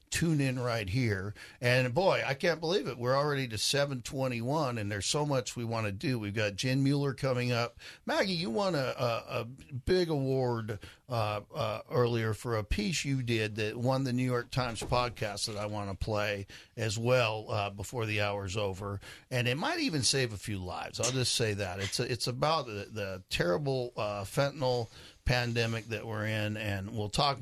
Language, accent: English, American